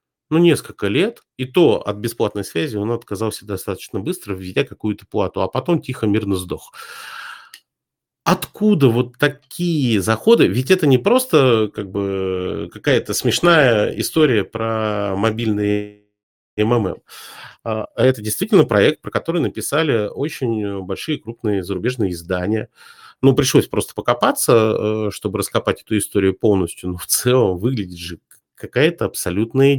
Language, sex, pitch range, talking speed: Russian, male, 100-125 Hz, 125 wpm